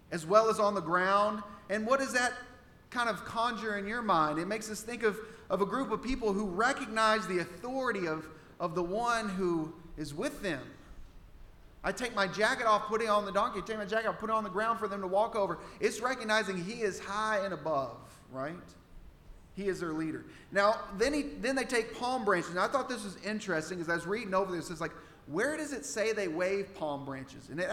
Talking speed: 230 wpm